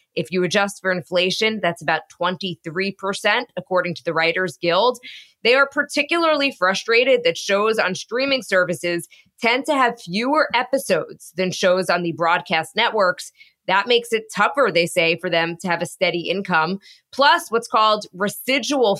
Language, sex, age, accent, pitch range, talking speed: English, female, 20-39, American, 170-225 Hz, 160 wpm